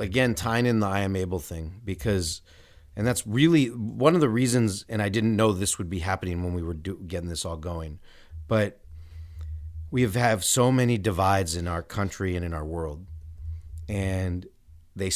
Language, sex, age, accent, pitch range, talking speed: English, male, 30-49, American, 85-110 Hz, 190 wpm